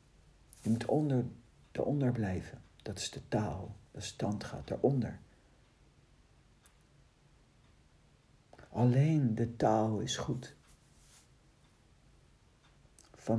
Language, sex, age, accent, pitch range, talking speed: Dutch, male, 60-79, Dutch, 100-125 Hz, 85 wpm